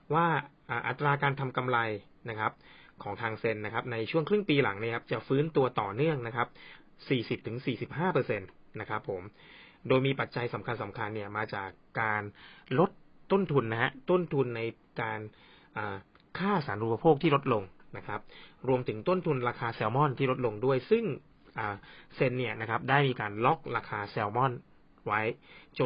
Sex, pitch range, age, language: male, 110-145 Hz, 20-39, Thai